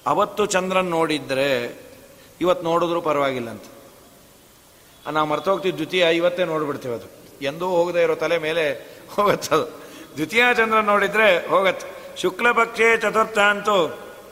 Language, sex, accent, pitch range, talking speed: Kannada, male, native, 170-210 Hz, 110 wpm